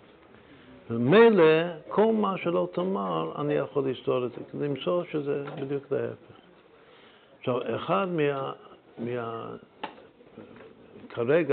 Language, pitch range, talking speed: Hebrew, 110-135 Hz, 100 wpm